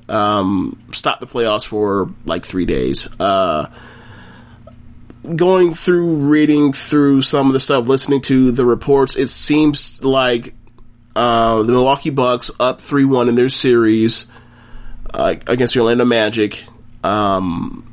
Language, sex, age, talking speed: English, male, 30-49, 130 wpm